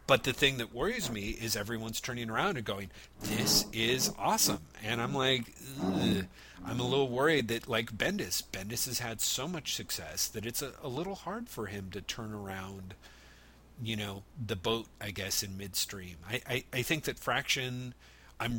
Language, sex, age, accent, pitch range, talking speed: English, male, 40-59, American, 95-120 Hz, 185 wpm